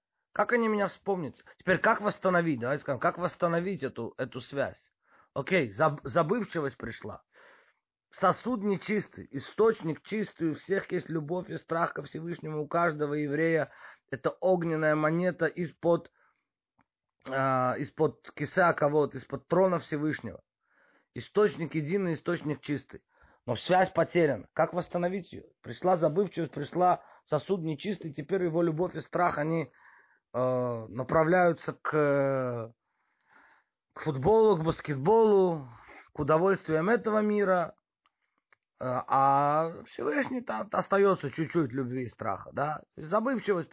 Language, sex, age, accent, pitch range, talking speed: Russian, male, 30-49, native, 135-180 Hz, 115 wpm